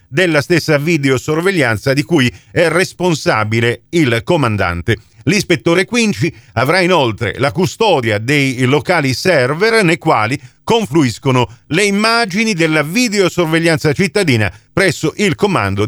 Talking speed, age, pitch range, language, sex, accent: 110 wpm, 50-69, 130-185 Hz, Italian, male, native